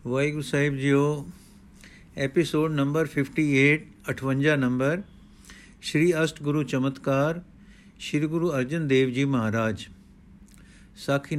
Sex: male